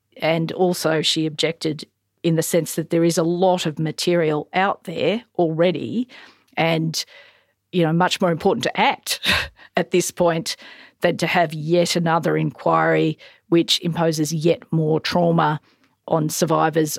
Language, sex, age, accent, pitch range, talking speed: English, female, 40-59, Australian, 155-180 Hz, 145 wpm